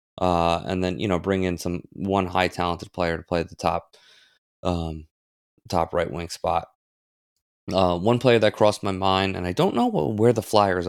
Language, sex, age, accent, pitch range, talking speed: English, male, 20-39, American, 85-100 Hz, 205 wpm